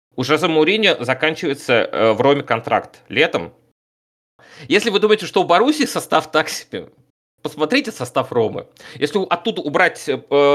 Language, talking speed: Russian, 130 wpm